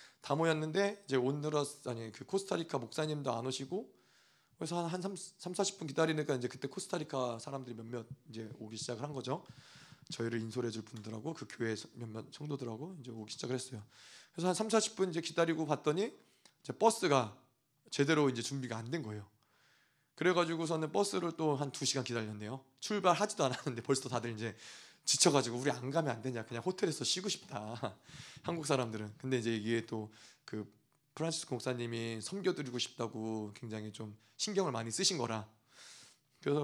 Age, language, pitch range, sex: 20-39, Korean, 120-165 Hz, male